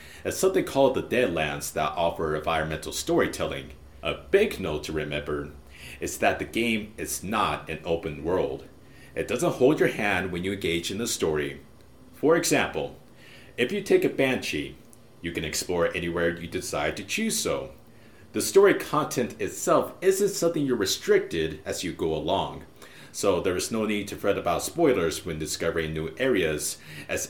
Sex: male